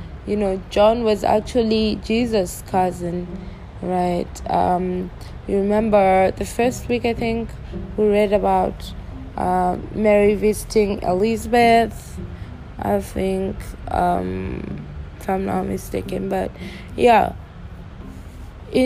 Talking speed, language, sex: 105 wpm, English, female